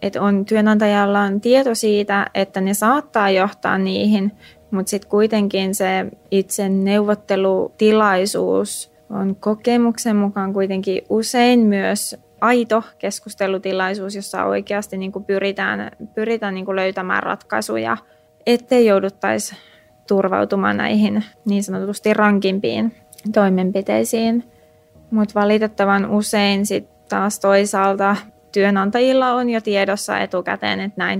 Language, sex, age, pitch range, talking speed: Finnish, female, 20-39, 190-215 Hz, 105 wpm